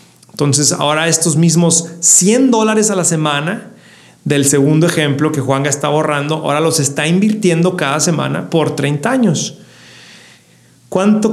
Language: Spanish